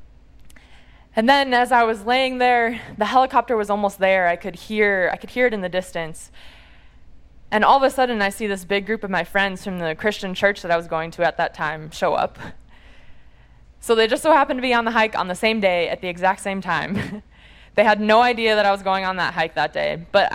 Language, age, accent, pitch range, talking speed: English, 20-39, American, 170-220 Hz, 240 wpm